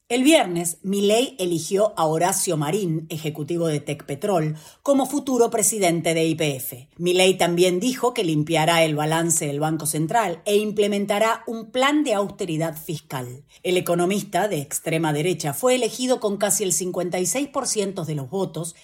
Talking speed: 150 wpm